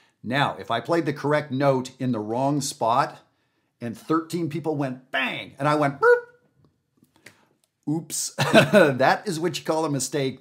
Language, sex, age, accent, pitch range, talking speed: English, male, 50-69, American, 115-160 Hz, 155 wpm